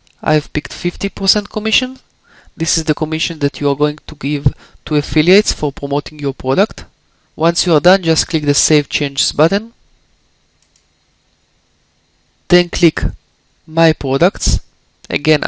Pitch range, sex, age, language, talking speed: 140-170 Hz, male, 20-39, English, 135 wpm